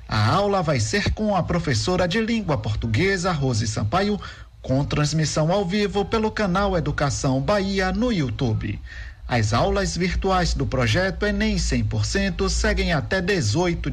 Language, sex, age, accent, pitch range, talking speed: Portuguese, male, 50-69, Brazilian, 130-185 Hz, 140 wpm